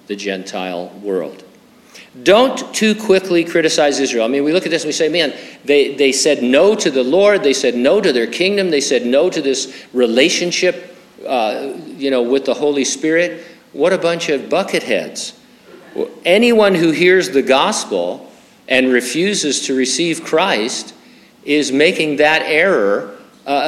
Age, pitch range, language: 50-69, 135-185 Hz, English